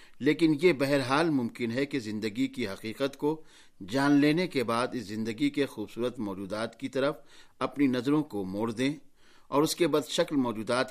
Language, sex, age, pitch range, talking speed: Urdu, male, 50-69, 125-155 Hz, 175 wpm